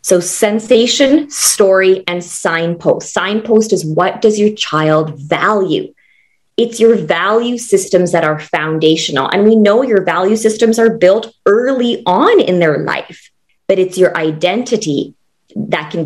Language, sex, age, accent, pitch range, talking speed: English, female, 20-39, American, 170-230 Hz, 140 wpm